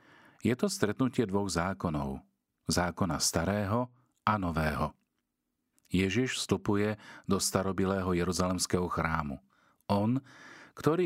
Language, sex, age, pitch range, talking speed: Slovak, male, 40-59, 85-110 Hz, 90 wpm